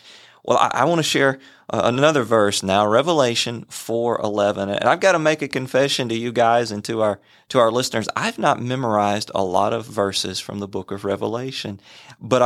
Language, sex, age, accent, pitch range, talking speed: English, male, 30-49, American, 100-135 Hz, 195 wpm